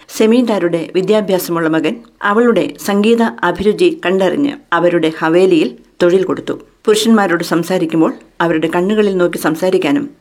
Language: Malayalam